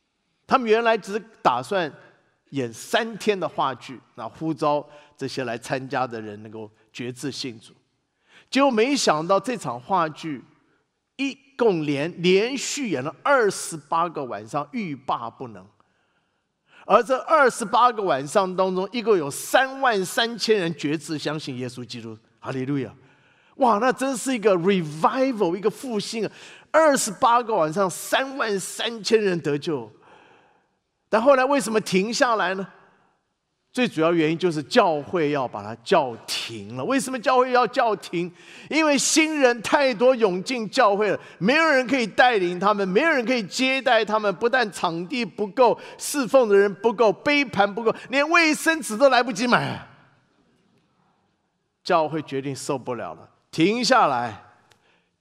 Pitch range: 150-250 Hz